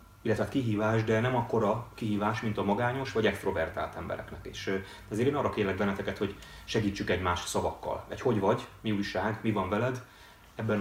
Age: 30-49